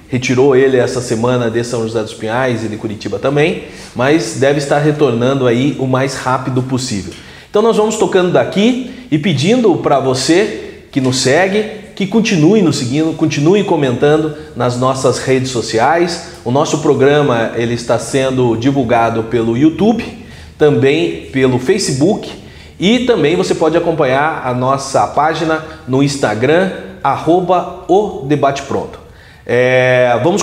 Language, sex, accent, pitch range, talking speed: Portuguese, male, Brazilian, 130-170 Hz, 135 wpm